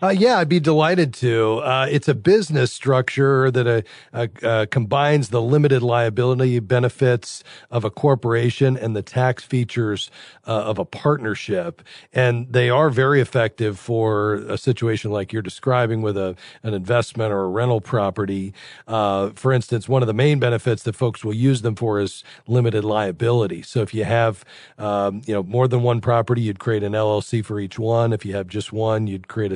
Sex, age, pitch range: male, 40-59, 105-125 Hz